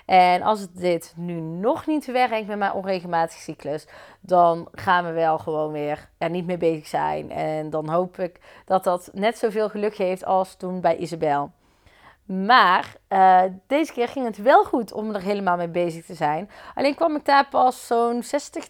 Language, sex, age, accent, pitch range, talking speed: Dutch, female, 30-49, Dutch, 180-230 Hz, 190 wpm